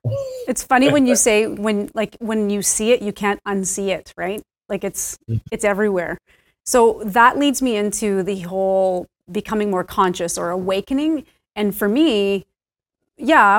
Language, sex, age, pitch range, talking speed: English, female, 30-49, 190-225 Hz, 160 wpm